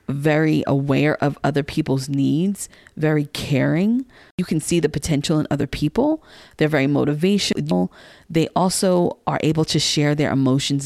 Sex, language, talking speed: female, English, 150 wpm